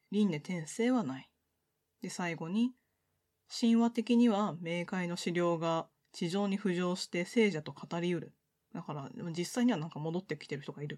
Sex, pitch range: female, 155-215 Hz